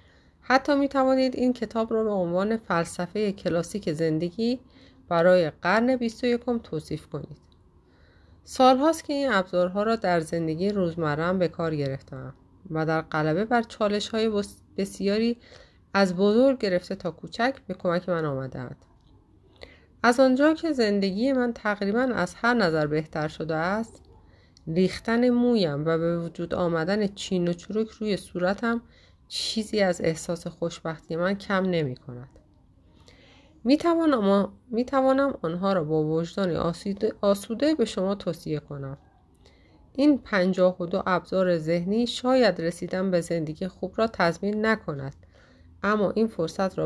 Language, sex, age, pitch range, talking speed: Persian, female, 30-49, 160-225 Hz, 130 wpm